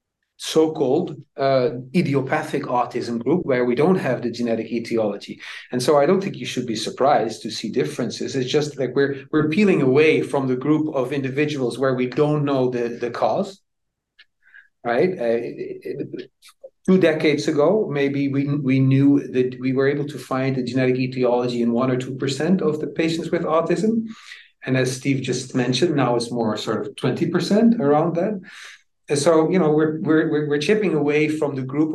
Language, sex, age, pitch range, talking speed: English, male, 40-59, 125-160 Hz, 175 wpm